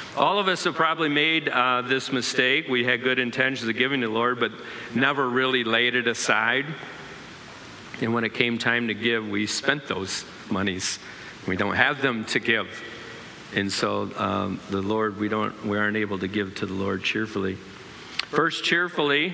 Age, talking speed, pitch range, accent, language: 50-69, 180 wpm, 115-140 Hz, American, English